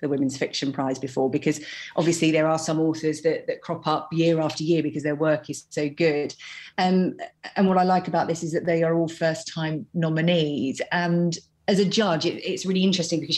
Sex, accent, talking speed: female, British, 215 wpm